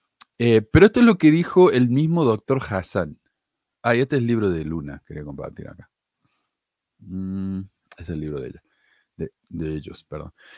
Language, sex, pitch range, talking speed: Spanish, male, 95-125 Hz, 185 wpm